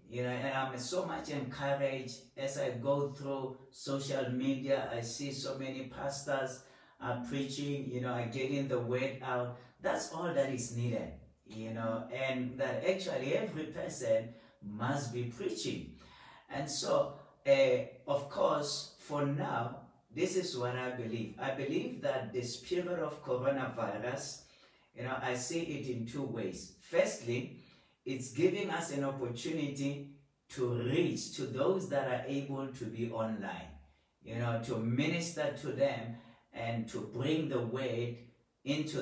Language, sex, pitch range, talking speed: English, male, 125-145 Hz, 150 wpm